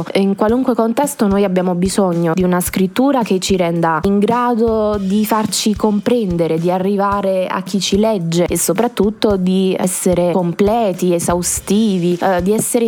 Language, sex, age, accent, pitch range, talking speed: Italian, female, 20-39, native, 175-210 Hz, 150 wpm